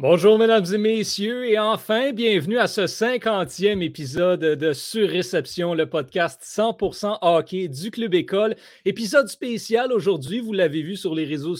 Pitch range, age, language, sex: 155-220 Hz, 30-49, French, male